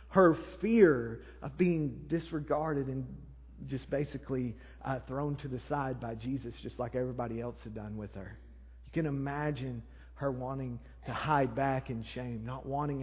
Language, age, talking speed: English, 40-59, 160 wpm